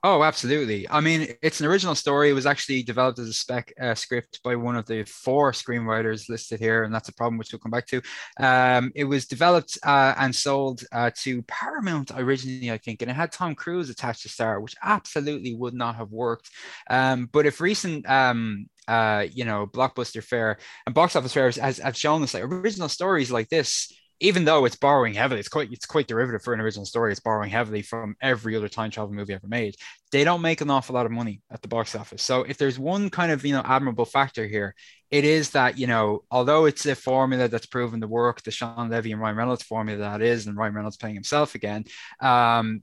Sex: male